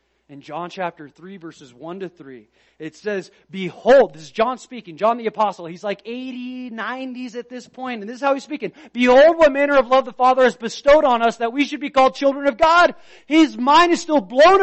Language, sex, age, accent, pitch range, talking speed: English, male, 30-49, American, 220-300 Hz, 225 wpm